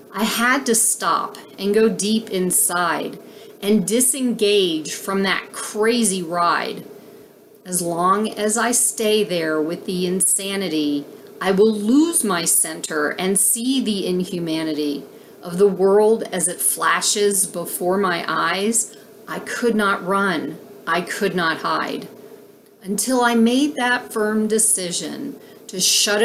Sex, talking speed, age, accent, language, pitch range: female, 130 wpm, 40-59, American, English, 185-220 Hz